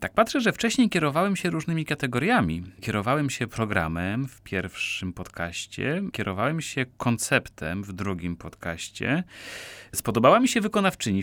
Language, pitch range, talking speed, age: Polish, 100-145 Hz, 130 wpm, 30-49